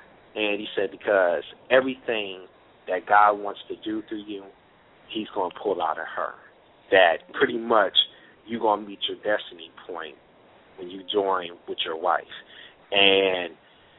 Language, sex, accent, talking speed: English, male, American, 155 wpm